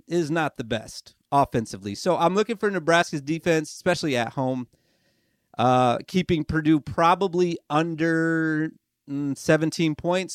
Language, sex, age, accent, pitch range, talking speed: English, male, 30-49, American, 140-185 Hz, 120 wpm